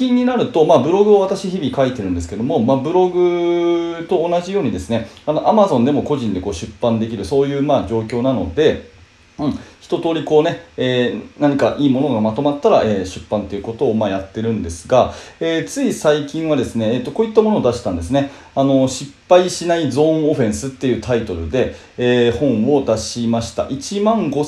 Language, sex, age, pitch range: Japanese, male, 30-49, 115-165 Hz